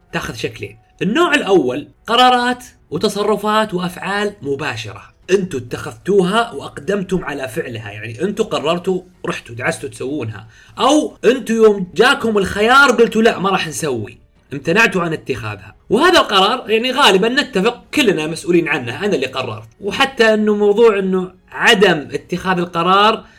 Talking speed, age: 130 wpm, 30-49